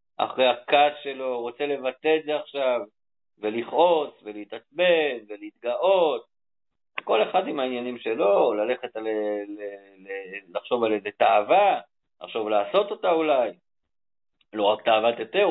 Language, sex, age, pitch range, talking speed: Hebrew, male, 50-69, 125-180 Hz, 130 wpm